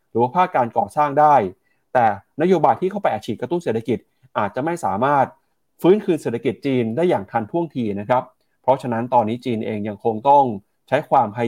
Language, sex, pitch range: Thai, male, 115-155 Hz